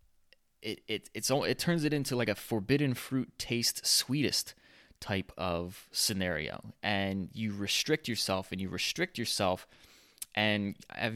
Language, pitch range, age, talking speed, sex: English, 95-120 Hz, 20-39, 145 wpm, male